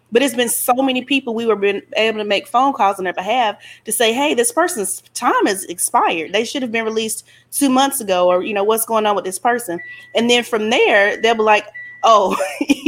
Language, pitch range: English, 195-245 Hz